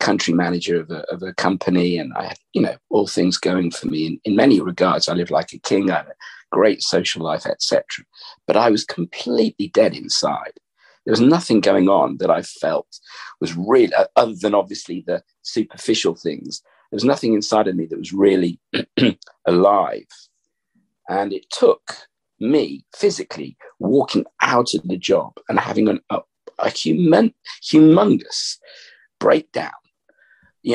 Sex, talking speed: male, 165 wpm